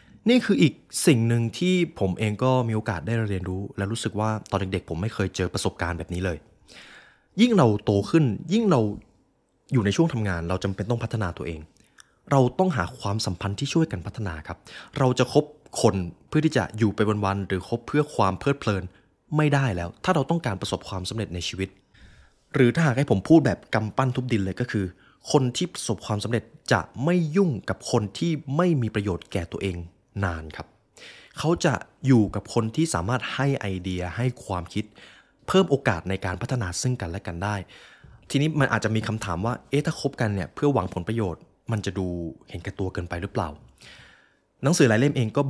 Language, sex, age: Thai, male, 20-39